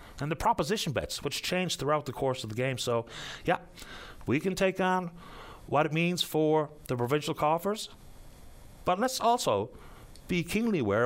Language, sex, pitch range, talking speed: English, male, 125-185 Hz, 175 wpm